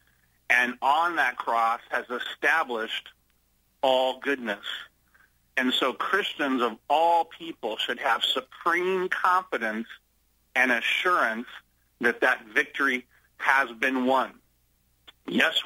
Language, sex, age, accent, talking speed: English, male, 40-59, American, 105 wpm